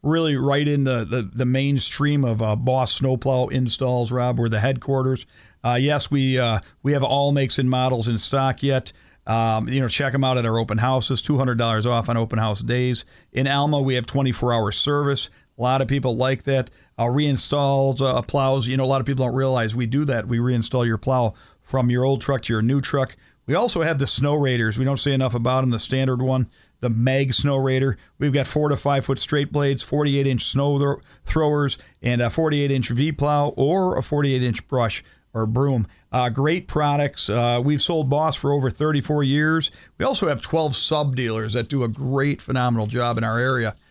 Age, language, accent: 50-69, Japanese, American